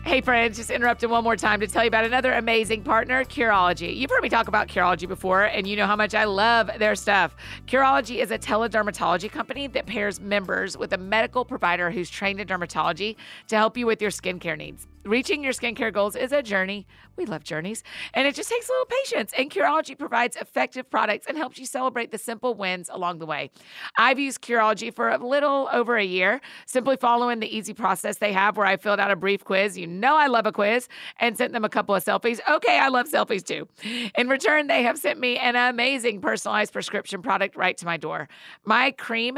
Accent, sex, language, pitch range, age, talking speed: American, female, English, 200-250 Hz, 30-49, 220 wpm